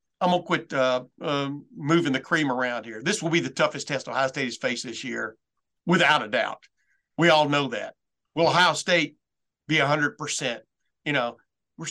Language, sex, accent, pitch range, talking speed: English, male, American, 135-165 Hz, 190 wpm